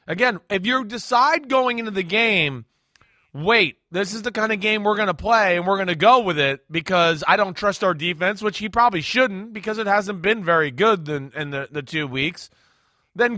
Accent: American